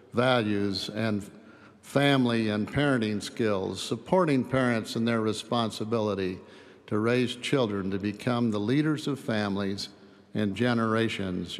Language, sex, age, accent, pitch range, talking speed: English, male, 50-69, American, 100-130 Hz, 115 wpm